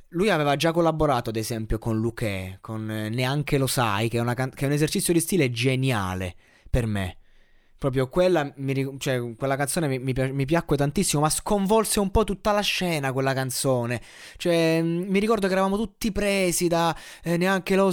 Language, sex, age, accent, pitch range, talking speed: Italian, male, 20-39, native, 130-180 Hz, 180 wpm